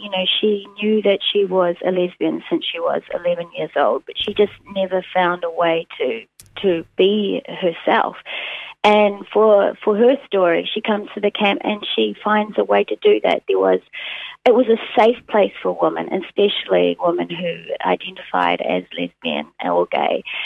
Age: 30-49